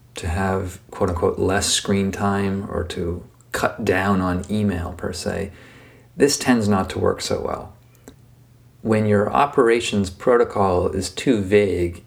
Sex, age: male, 40-59